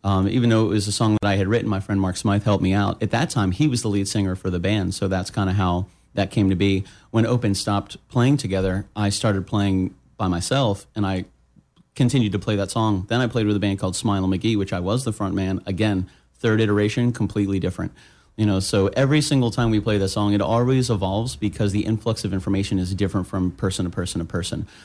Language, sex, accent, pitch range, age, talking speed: English, male, American, 95-110 Hz, 30-49, 245 wpm